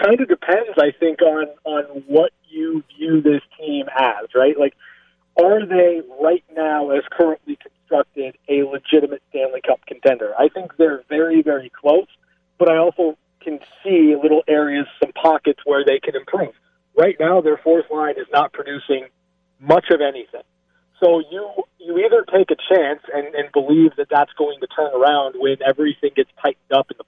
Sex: male